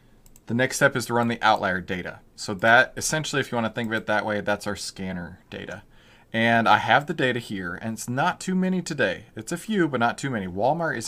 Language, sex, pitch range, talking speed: English, male, 105-140 Hz, 250 wpm